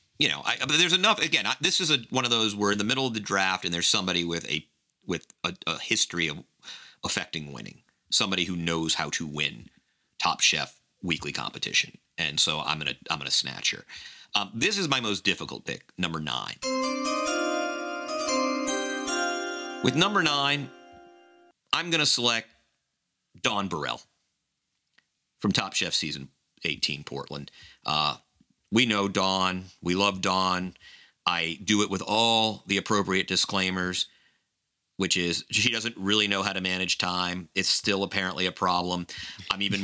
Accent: American